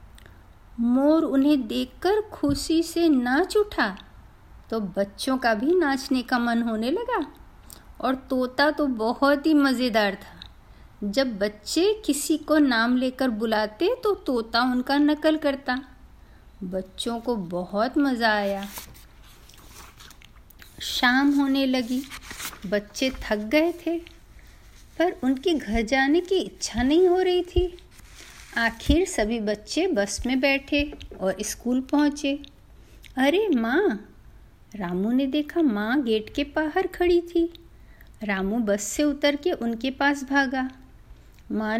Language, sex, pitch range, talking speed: Hindi, female, 225-310 Hz, 125 wpm